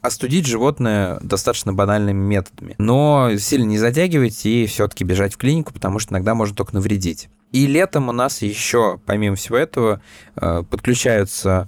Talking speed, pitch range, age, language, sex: 150 wpm, 100-120 Hz, 20-39, Russian, male